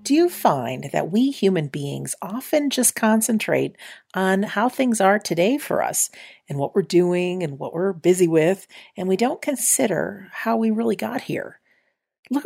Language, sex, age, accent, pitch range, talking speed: English, female, 50-69, American, 160-220 Hz, 175 wpm